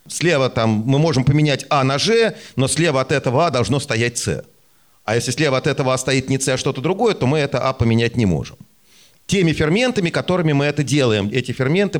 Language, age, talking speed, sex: Russian, 40-59, 215 wpm, male